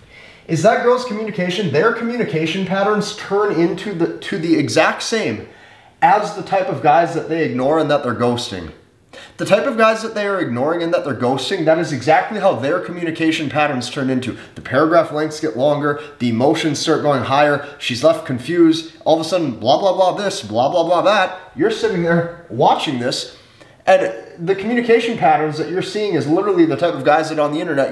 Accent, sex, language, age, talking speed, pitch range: American, male, English, 30-49, 200 wpm, 150-200 Hz